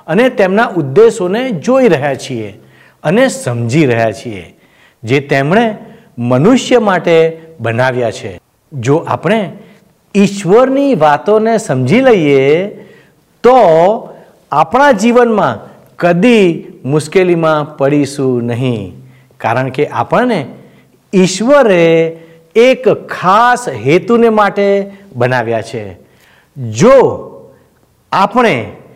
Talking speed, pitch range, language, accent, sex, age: 85 wpm, 145-225 Hz, Gujarati, native, male, 60-79